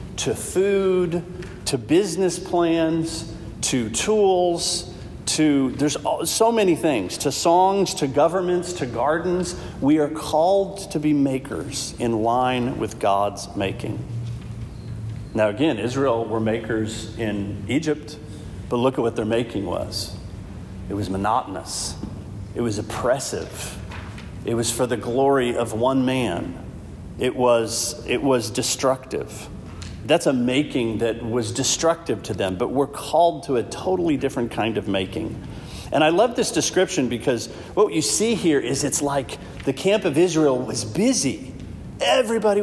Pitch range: 110-185 Hz